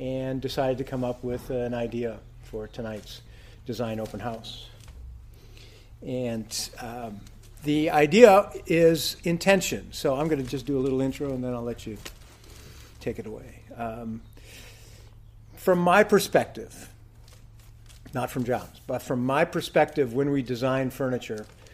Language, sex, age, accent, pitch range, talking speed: English, male, 50-69, American, 110-140 Hz, 140 wpm